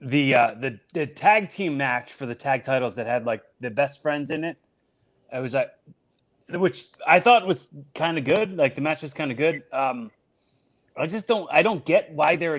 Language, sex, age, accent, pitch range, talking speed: English, male, 30-49, American, 135-190 Hz, 215 wpm